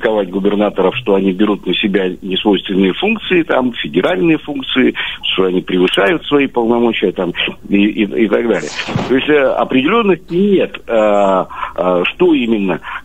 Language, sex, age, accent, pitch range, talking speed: Russian, male, 50-69, native, 95-145 Hz, 140 wpm